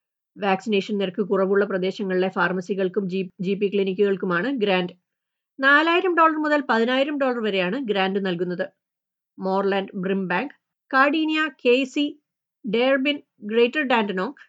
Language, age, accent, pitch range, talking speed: Malayalam, 30-49, native, 190-265 Hz, 100 wpm